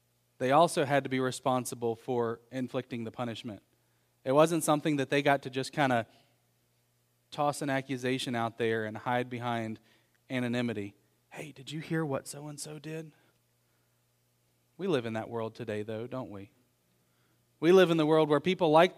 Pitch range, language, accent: 120-160 Hz, English, American